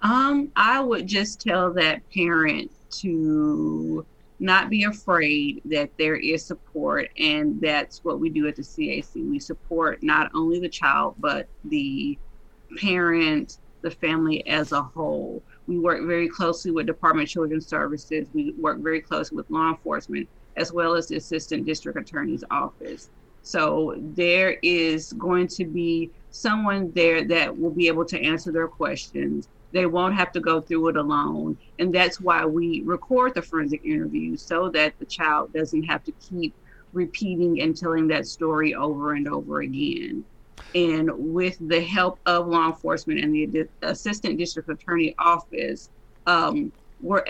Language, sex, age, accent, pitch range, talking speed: English, female, 30-49, American, 160-185 Hz, 160 wpm